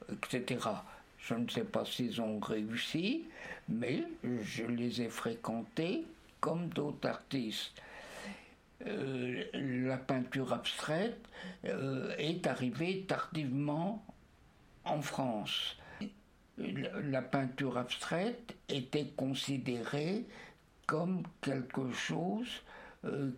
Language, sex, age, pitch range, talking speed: French, male, 60-79, 125-170 Hz, 90 wpm